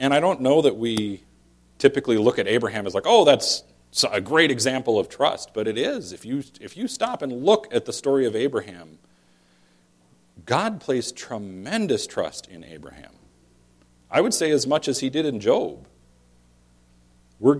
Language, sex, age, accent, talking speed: English, male, 40-59, American, 175 wpm